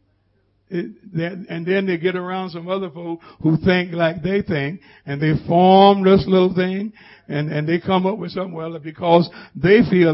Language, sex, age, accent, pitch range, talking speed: English, male, 60-79, American, 155-235 Hz, 190 wpm